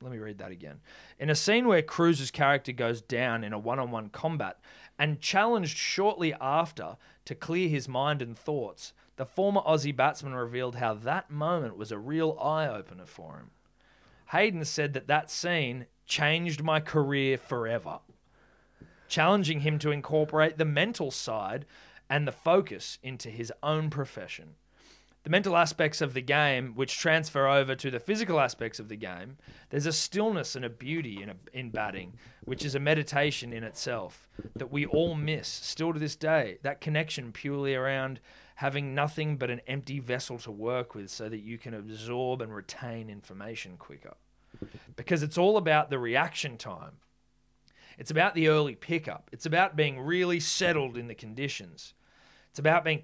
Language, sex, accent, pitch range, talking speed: English, male, Australian, 120-155 Hz, 170 wpm